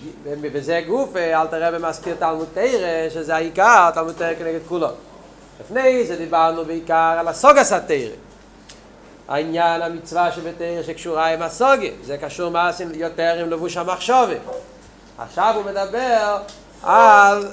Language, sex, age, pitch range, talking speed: Hebrew, male, 40-59, 170-230 Hz, 130 wpm